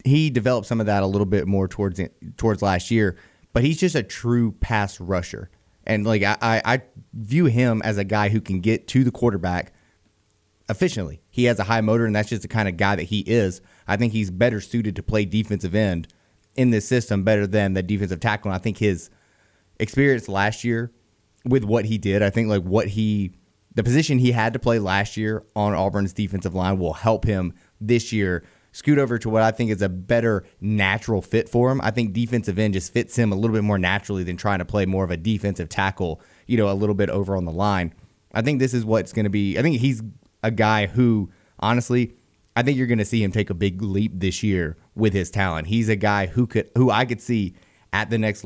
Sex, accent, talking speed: male, American, 230 wpm